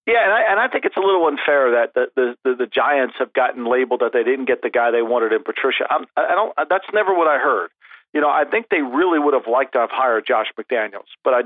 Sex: male